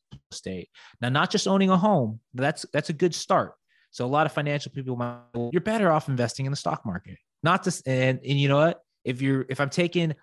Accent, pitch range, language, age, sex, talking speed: American, 115-140 Hz, English, 20-39, male, 240 wpm